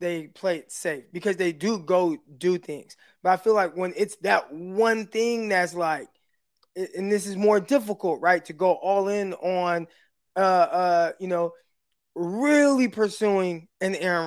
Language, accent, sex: English, American, male